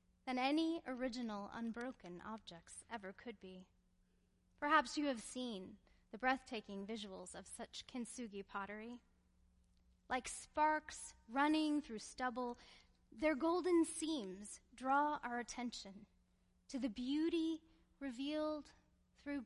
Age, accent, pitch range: 10-29, American, 190-280 Hz